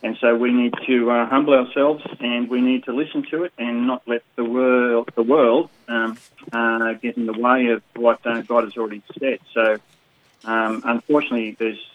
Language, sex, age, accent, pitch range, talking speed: English, male, 30-49, Australian, 105-125 Hz, 190 wpm